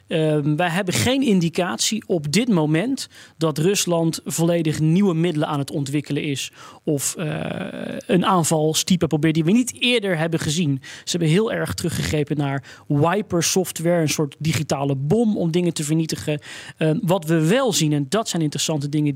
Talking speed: 170 wpm